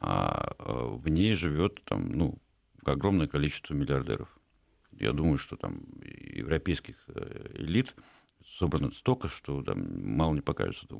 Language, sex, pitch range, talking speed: Russian, male, 75-95 Hz, 115 wpm